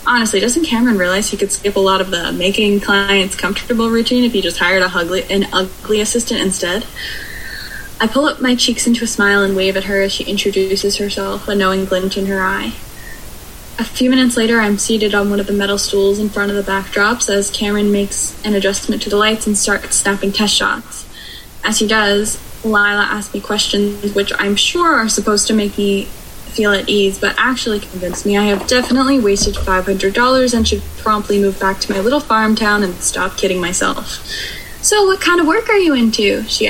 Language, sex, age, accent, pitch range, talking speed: English, female, 10-29, American, 195-235 Hz, 210 wpm